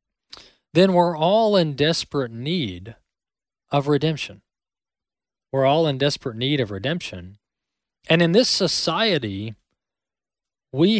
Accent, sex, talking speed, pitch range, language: American, male, 110 wpm, 120-165 Hz, English